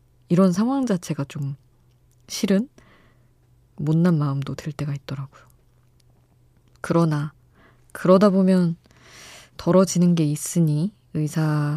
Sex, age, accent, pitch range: female, 20-39, native, 125-170 Hz